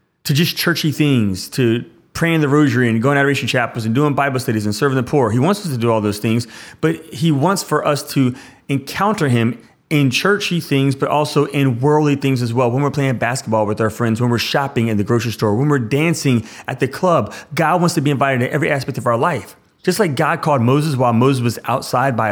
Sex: male